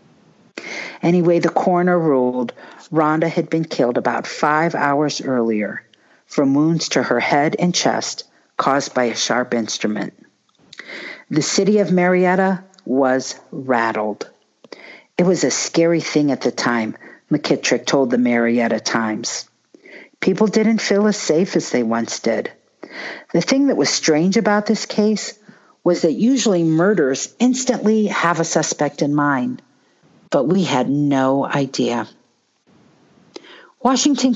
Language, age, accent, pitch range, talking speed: English, 50-69, American, 130-205 Hz, 135 wpm